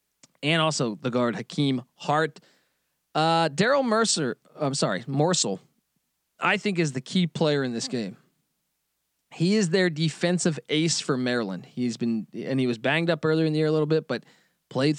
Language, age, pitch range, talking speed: English, 20-39, 145-180 Hz, 175 wpm